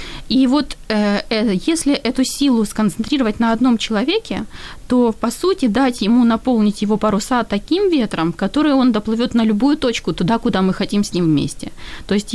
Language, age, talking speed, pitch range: Ukrainian, 20-39, 165 wpm, 205-275 Hz